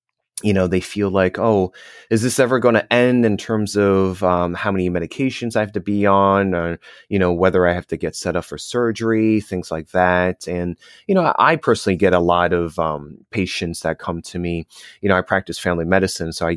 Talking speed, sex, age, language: 225 wpm, male, 30-49, English